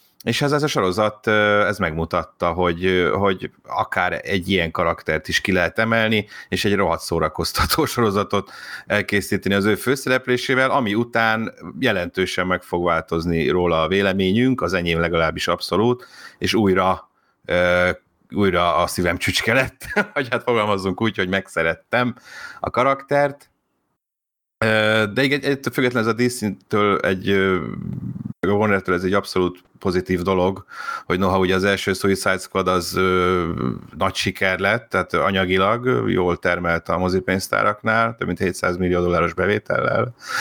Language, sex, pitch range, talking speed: Hungarian, male, 90-115 Hz, 135 wpm